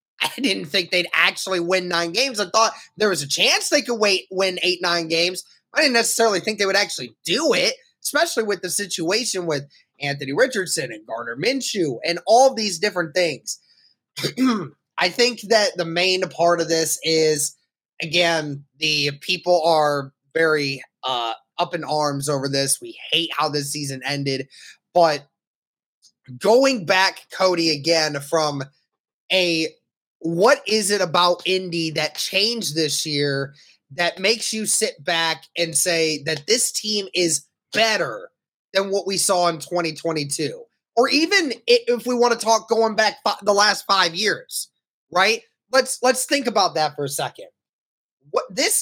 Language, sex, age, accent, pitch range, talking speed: English, male, 20-39, American, 160-215 Hz, 160 wpm